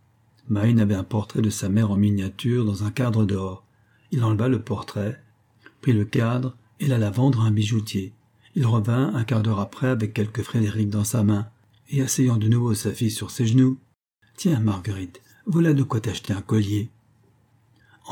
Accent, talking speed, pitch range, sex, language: French, 190 wpm, 105-125 Hz, male, French